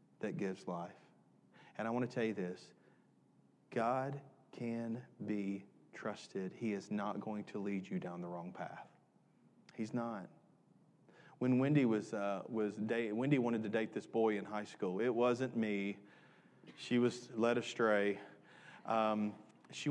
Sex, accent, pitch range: male, American, 110-185 Hz